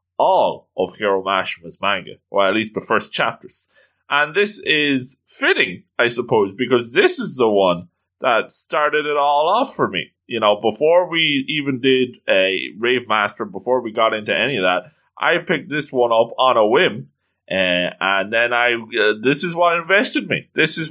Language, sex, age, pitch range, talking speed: English, male, 20-39, 105-150 Hz, 185 wpm